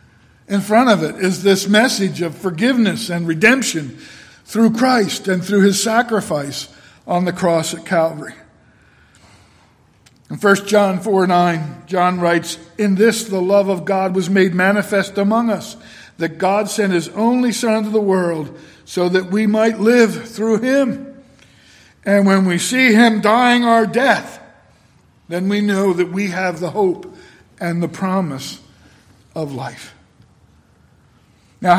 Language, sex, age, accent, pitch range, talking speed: English, male, 50-69, American, 165-215 Hz, 145 wpm